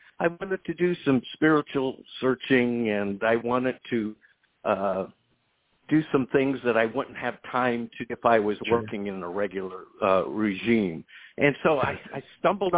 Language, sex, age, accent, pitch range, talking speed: English, male, 60-79, American, 110-135 Hz, 165 wpm